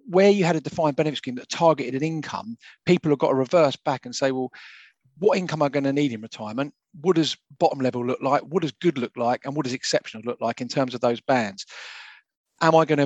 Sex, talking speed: male, 255 wpm